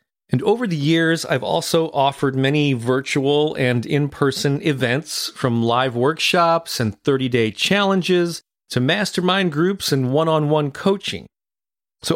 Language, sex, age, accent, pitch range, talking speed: English, male, 40-59, American, 130-195 Hz, 125 wpm